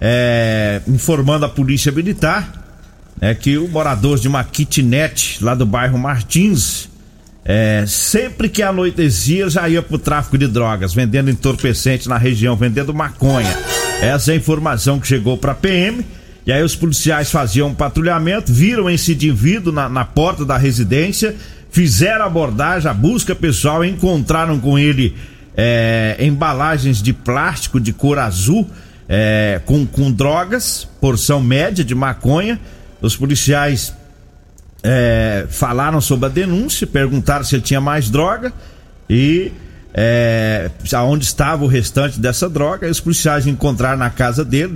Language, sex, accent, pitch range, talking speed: Portuguese, male, Brazilian, 115-155 Hz, 145 wpm